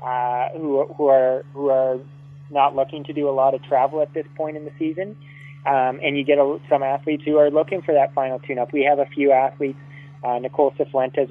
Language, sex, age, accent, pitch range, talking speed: English, male, 20-39, American, 130-150 Hz, 230 wpm